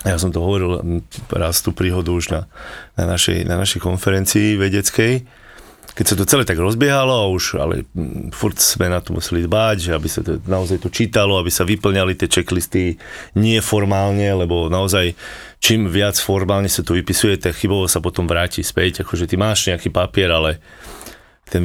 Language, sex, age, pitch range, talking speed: Slovak, male, 30-49, 90-110 Hz, 175 wpm